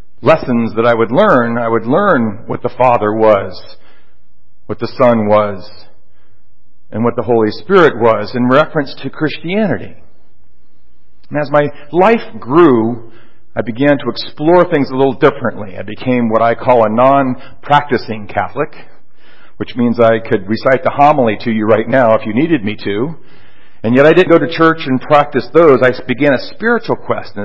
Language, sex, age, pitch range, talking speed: English, male, 50-69, 115-150 Hz, 175 wpm